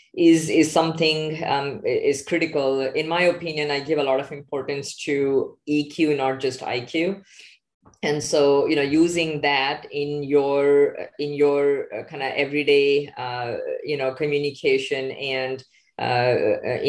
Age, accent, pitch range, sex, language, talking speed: 20-39, Indian, 135-155 Hz, female, English, 140 wpm